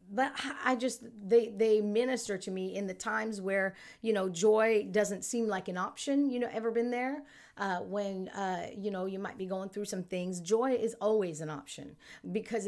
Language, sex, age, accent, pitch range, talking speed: English, female, 40-59, American, 195-240 Hz, 205 wpm